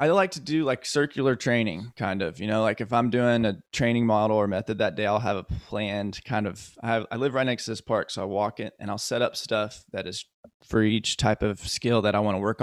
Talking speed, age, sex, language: 270 wpm, 20-39, male, English